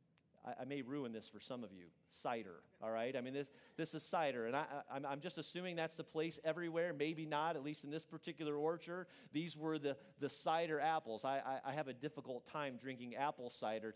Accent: American